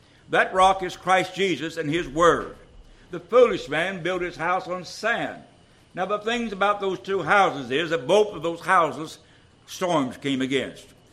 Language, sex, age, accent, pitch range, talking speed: English, male, 60-79, American, 145-195 Hz, 175 wpm